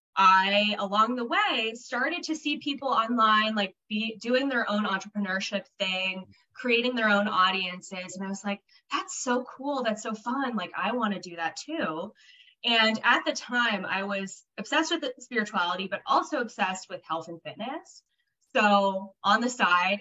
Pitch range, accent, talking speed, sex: 165-220 Hz, American, 175 wpm, female